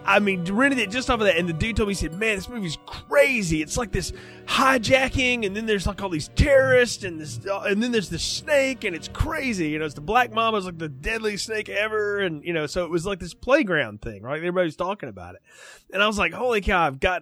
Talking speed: 260 wpm